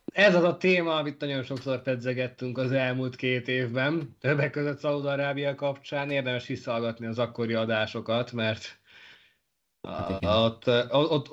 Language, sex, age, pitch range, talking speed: Hungarian, male, 20-39, 105-125 Hz, 130 wpm